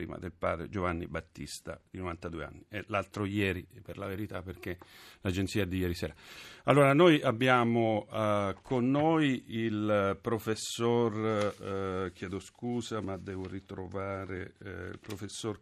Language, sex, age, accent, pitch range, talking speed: Italian, male, 40-59, native, 100-125 Hz, 140 wpm